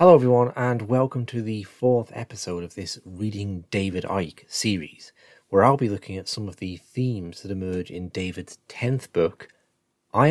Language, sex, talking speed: English, male, 175 wpm